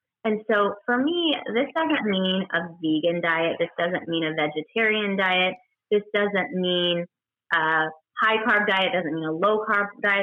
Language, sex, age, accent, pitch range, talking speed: English, female, 20-39, American, 165-220 Hz, 175 wpm